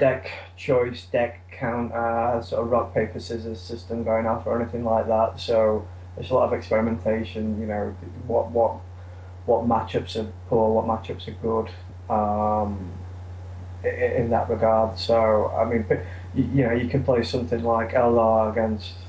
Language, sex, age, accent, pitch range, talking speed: English, male, 20-39, British, 90-115 Hz, 160 wpm